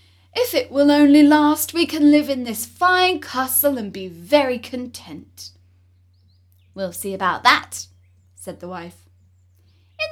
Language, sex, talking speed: Turkish, female, 140 wpm